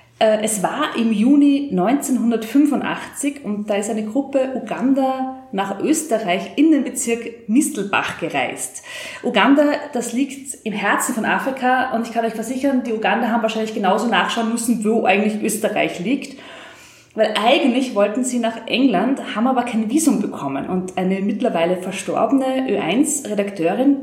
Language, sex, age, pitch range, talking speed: German, female, 20-39, 215-275 Hz, 140 wpm